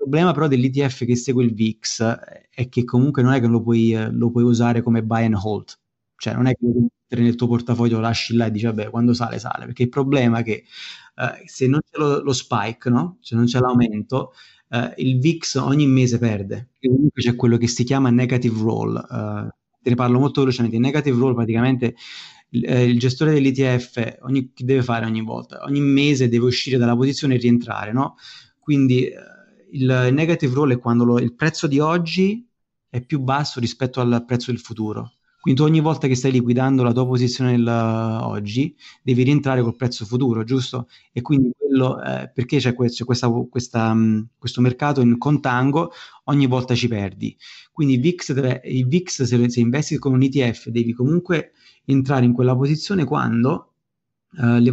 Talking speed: 195 wpm